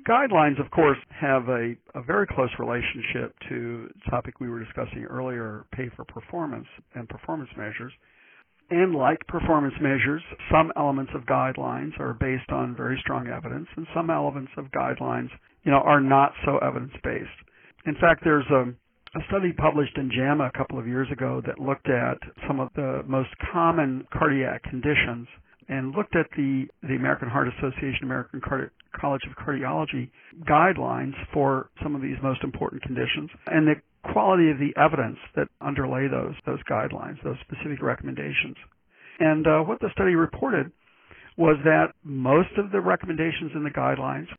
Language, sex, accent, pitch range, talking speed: English, male, American, 130-160 Hz, 165 wpm